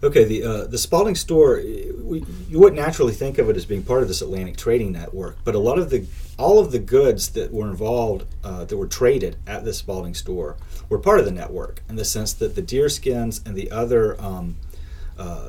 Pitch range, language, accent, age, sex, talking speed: 75-120 Hz, English, American, 40-59, male, 225 wpm